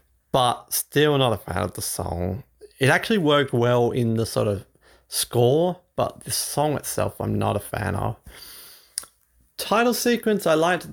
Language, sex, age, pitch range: English, male, 30-49, 95-130 Hz